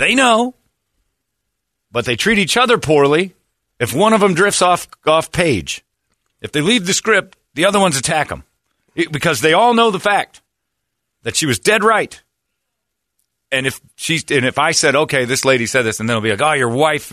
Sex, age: male, 40-59